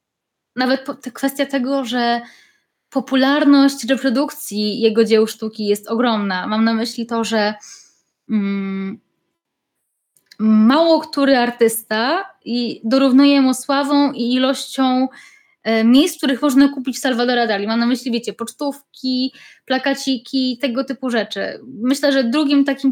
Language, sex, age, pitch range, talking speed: Polish, female, 20-39, 235-280 Hz, 120 wpm